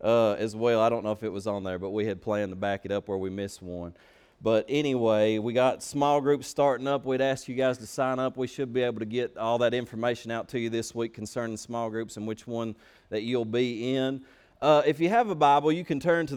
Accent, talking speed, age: American, 265 wpm, 30-49